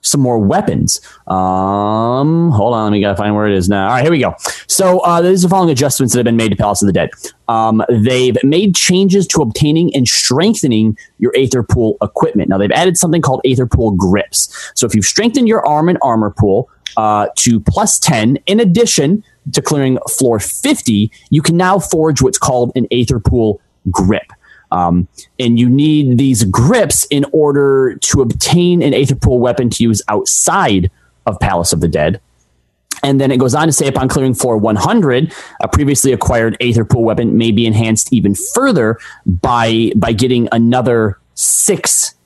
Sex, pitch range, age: male, 110-155 Hz, 20-39